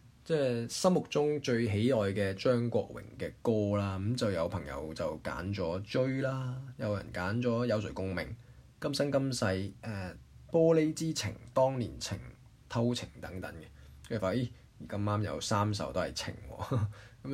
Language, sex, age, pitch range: Chinese, male, 20-39, 95-125 Hz